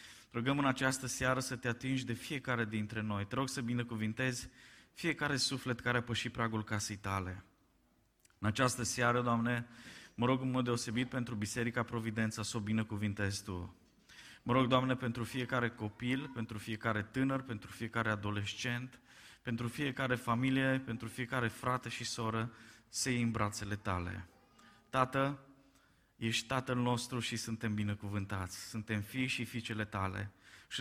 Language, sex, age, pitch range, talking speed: Romanian, male, 20-39, 105-125 Hz, 150 wpm